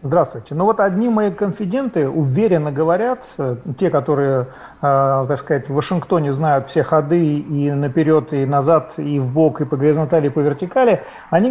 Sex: male